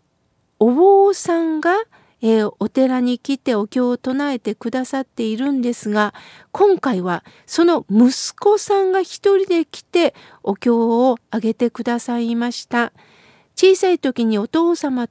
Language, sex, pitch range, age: Japanese, female, 220-305 Hz, 50-69